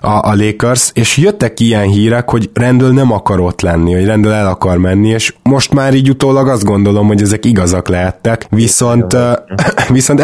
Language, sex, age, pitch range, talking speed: Hungarian, male, 20-39, 95-120 Hz, 175 wpm